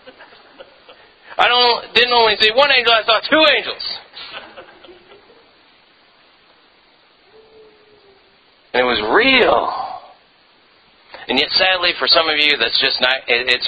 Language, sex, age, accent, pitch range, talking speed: English, male, 40-59, American, 130-195 Hz, 115 wpm